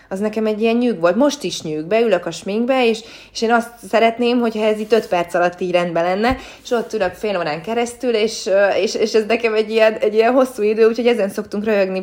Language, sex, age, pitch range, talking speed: Hungarian, female, 20-39, 165-230 Hz, 235 wpm